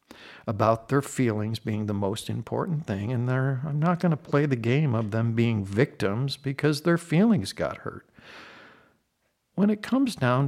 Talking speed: 165 wpm